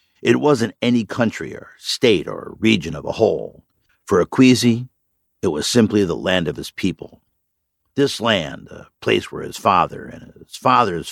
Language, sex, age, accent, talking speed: English, male, 60-79, American, 165 wpm